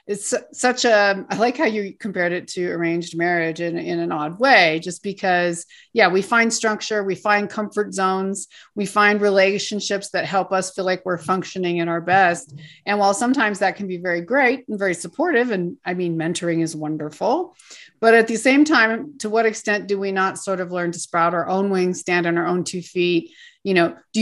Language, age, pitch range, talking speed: English, 40-59, 175-215 Hz, 210 wpm